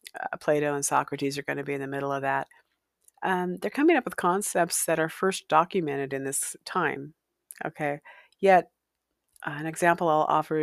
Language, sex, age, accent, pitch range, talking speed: English, female, 50-69, American, 140-165 Hz, 175 wpm